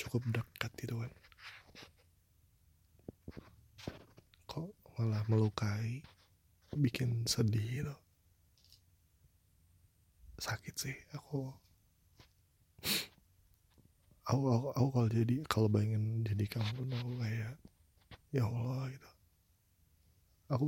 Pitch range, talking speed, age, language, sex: 95-125 Hz, 85 wpm, 20-39, Indonesian, male